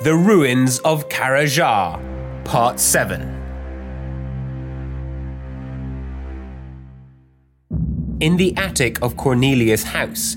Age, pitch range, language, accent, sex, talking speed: 30-49, 95-130 Hz, English, British, male, 70 wpm